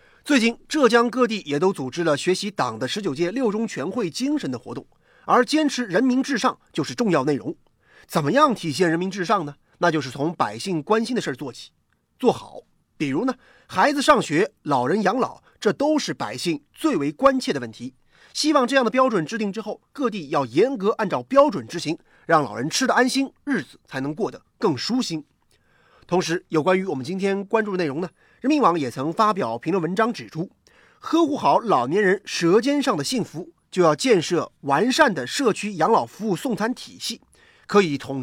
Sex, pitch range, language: male, 165-260 Hz, Chinese